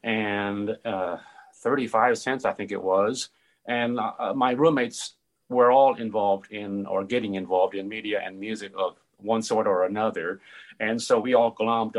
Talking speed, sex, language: 165 wpm, male, English